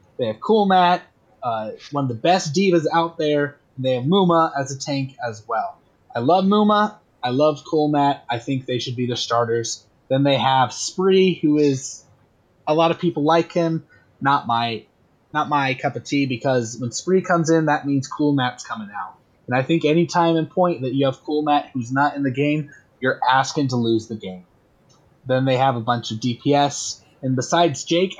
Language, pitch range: English, 125-155 Hz